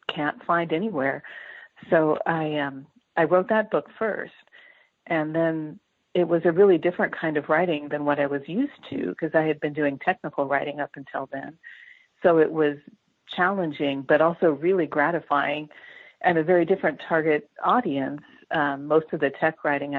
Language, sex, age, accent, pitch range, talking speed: English, female, 50-69, American, 145-180 Hz, 170 wpm